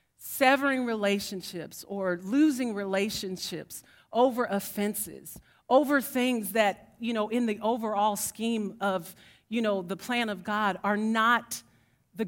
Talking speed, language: 125 wpm, English